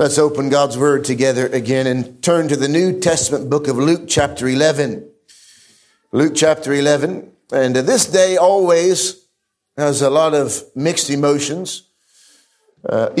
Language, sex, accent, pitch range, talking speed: English, male, American, 135-180 Hz, 140 wpm